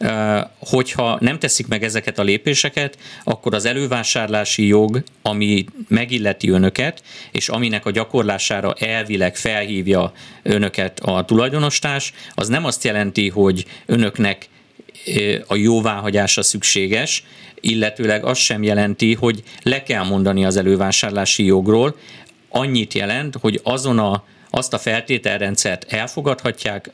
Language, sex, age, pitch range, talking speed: Hungarian, male, 50-69, 100-120 Hz, 115 wpm